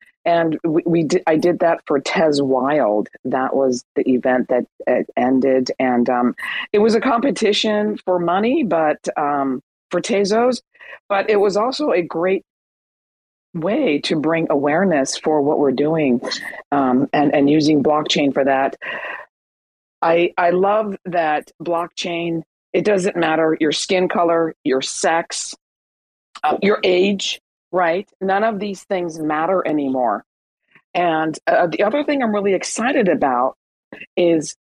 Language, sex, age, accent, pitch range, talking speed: English, female, 40-59, American, 145-205 Hz, 145 wpm